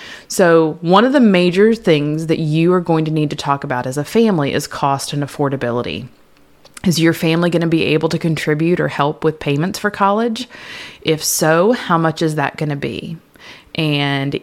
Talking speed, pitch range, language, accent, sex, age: 195 wpm, 145-170 Hz, English, American, female, 30-49